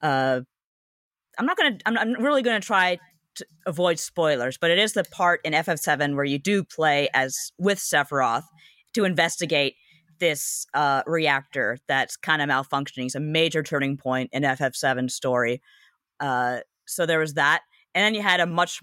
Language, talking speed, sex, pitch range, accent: English, 170 wpm, female, 135-165 Hz, American